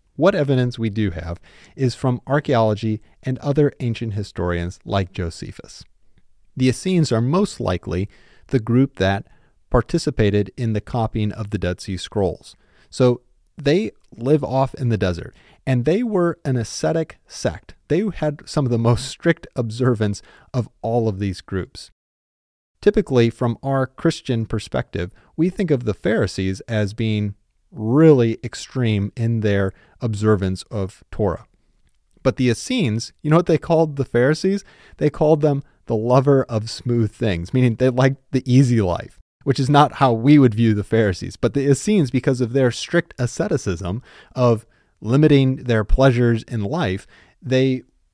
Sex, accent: male, American